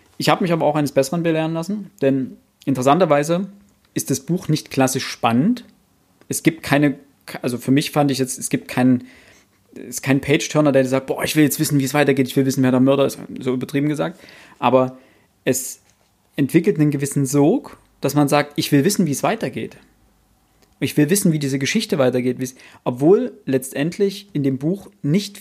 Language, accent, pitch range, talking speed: German, German, 135-175 Hz, 190 wpm